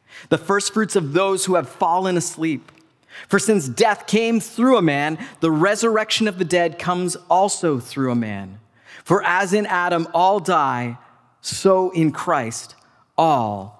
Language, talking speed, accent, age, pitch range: English, 155 wpm, American, 30-49, 160-210 Hz